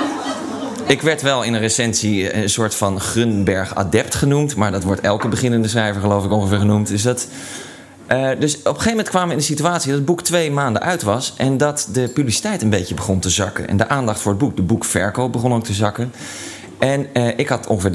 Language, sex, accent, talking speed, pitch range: Dutch, male, Dutch, 225 wpm, 100-135 Hz